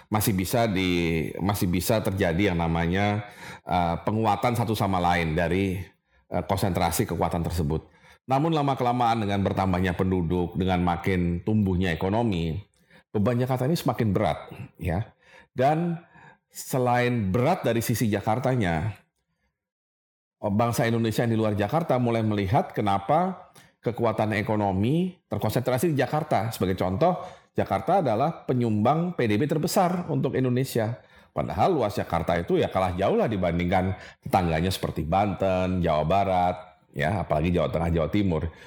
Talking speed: 125 wpm